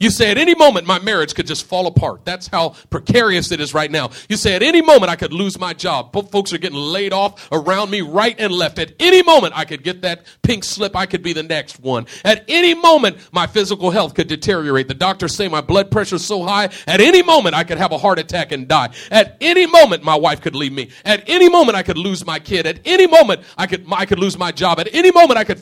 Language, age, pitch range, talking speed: English, 40-59, 170-260 Hz, 265 wpm